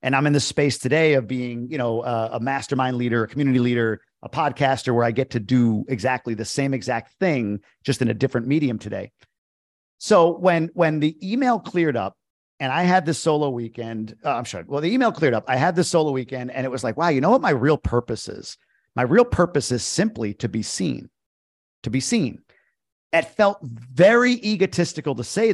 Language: English